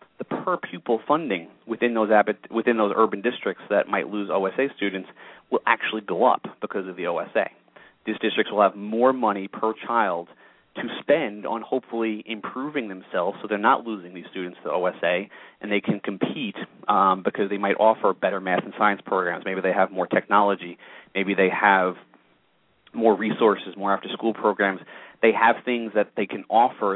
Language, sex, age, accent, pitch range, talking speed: English, male, 30-49, American, 95-110 Hz, 175 wpm